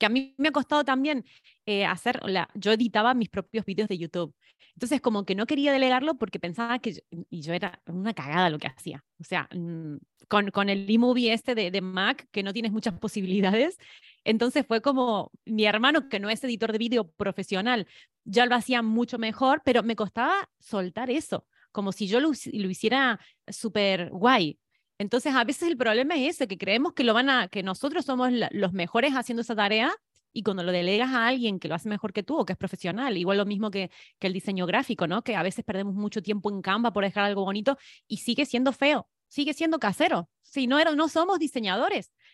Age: 30-49